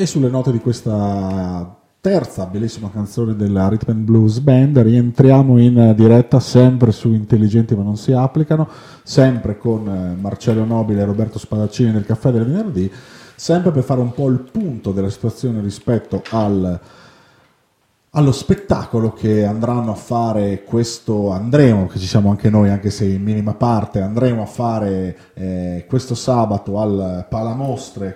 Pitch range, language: 100-125 Hz, Italian